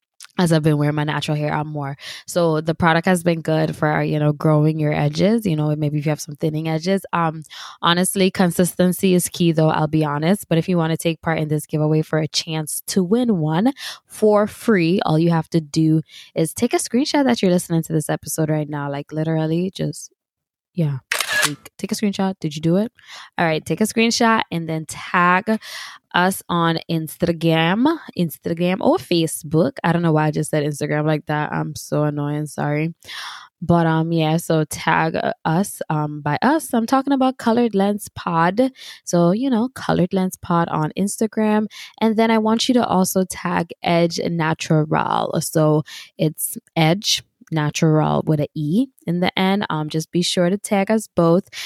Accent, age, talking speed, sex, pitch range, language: American, 10-29, 190 wpm, female, 155-190 Hz, English